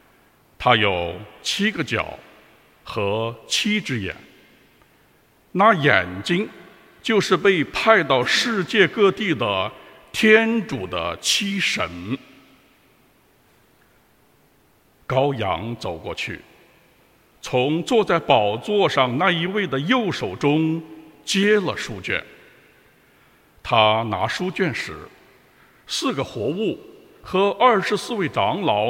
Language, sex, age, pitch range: English, male, 60-79, 130-205 Hz